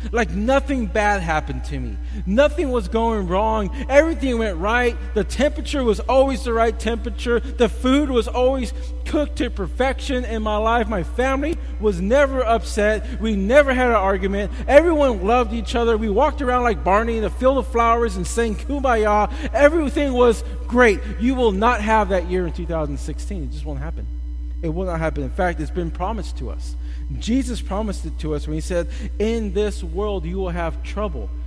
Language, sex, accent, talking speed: English, male, American, 185 wpm